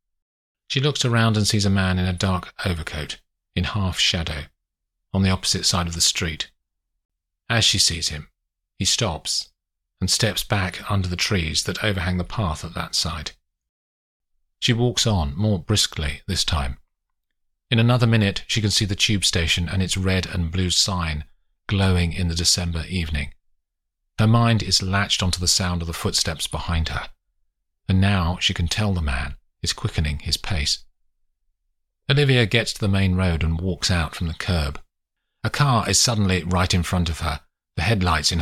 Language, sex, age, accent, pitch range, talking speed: English, male, 40-59, British, 80-100 Hz, 175 wpm